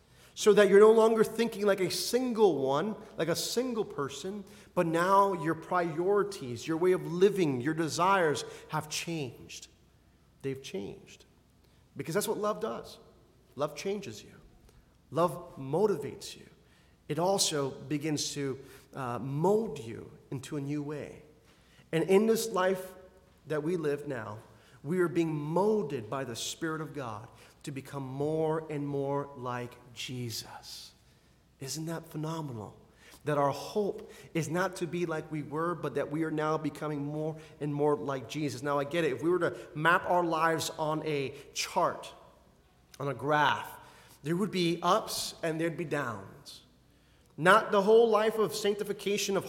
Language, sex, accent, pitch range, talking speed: English, male, American, 145-195 Hz, 160 wpm